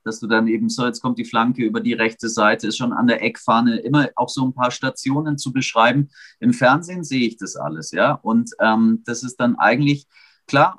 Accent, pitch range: German, 115-145 Hz